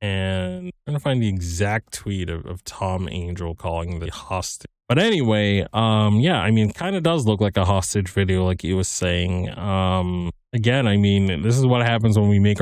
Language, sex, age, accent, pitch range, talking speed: English, male, 20-39, American, 95-115 Hz, 215 wpm